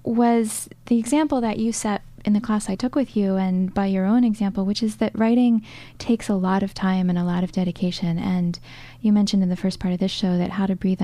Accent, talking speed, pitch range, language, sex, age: American, 250 wpm, 180-215 Hz, English, female, 10-29